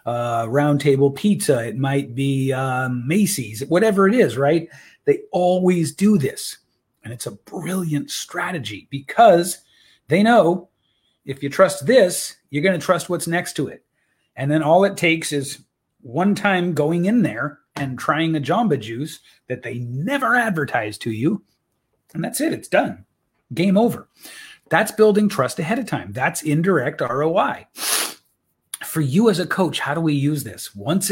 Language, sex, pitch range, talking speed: English, male, 140-195 Hz, 165 wpm